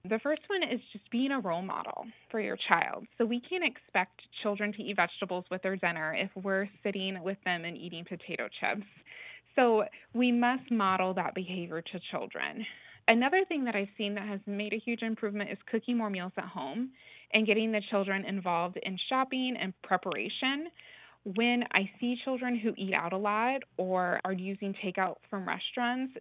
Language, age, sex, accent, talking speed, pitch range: English, 20-39, female, American, 185 wpm, 190-235 Hz